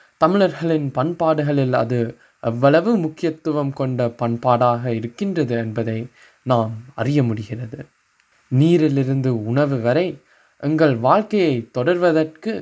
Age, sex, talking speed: 20-39, male, 85 wpm